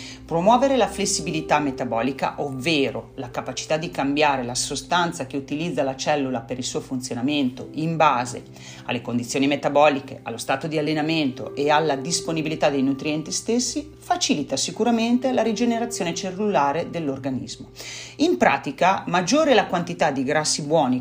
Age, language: 40-59, Italian